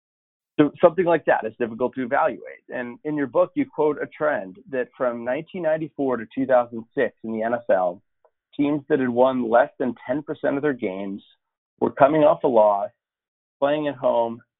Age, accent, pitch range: 40-59, American, 115-145 Hz